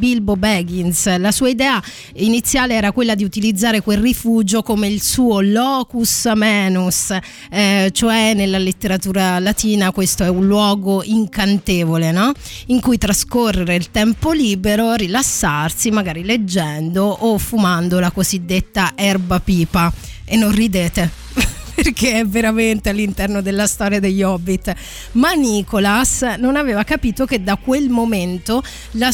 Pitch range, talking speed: 190-245 Hz, 130 wpm